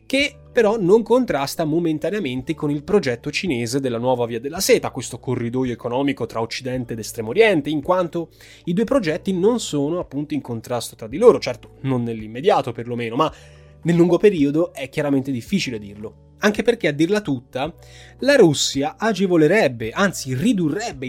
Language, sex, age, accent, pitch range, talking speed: Italian, male, 20-39, native, 115-160 Hz, 160 wpm